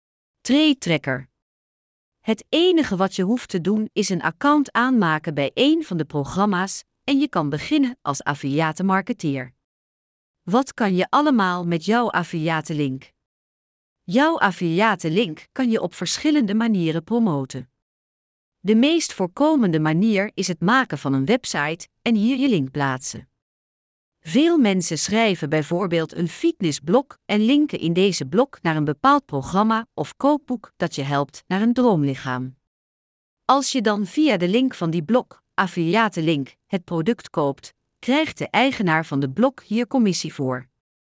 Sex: female